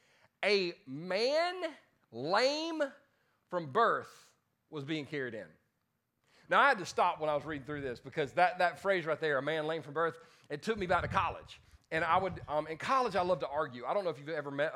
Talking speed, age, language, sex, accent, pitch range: 220 wpm, 40-59, English, male, American, 155-210 Hz